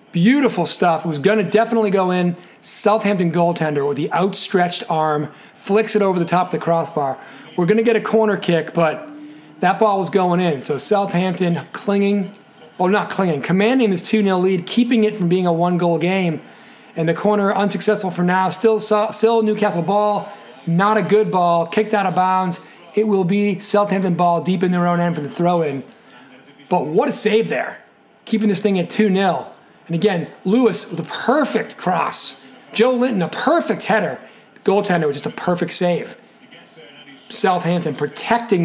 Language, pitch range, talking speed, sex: English, 170-210 Hz, 185 wpm, male